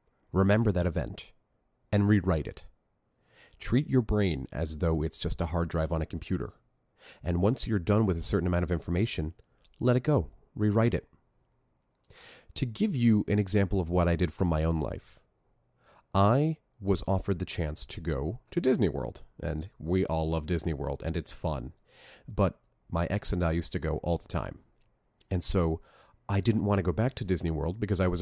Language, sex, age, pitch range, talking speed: English, male, 30-49, 80-105 Hz, 195 wpm